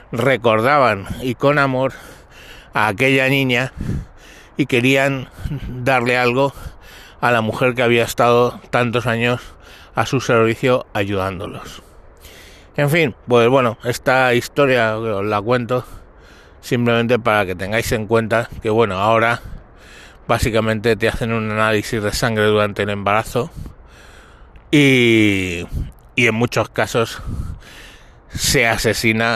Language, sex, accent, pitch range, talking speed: Spanish, male, Spanish, 105-125 Hz, 115 wpm